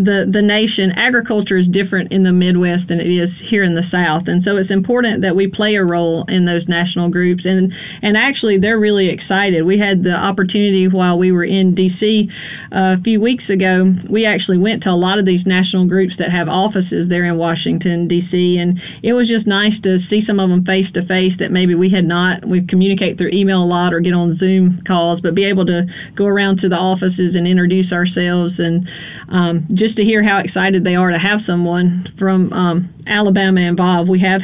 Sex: female